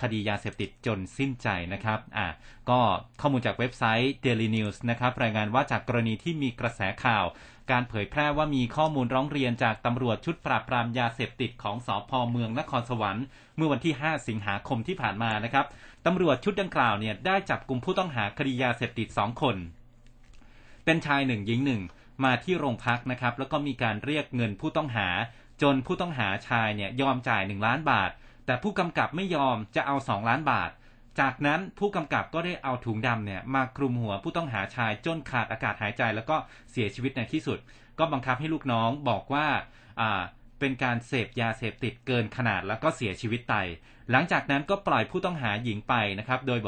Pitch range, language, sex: 115-140 Hz, Thai, male